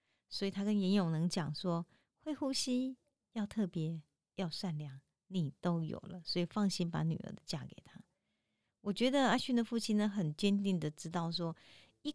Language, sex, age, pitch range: Chinese, female, 50-69, 165-210 Hz